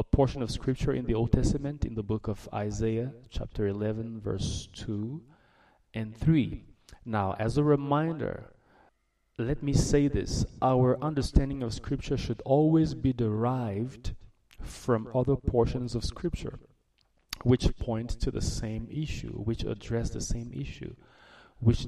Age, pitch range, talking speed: 30-49, 105-130 Hz, 145 wpm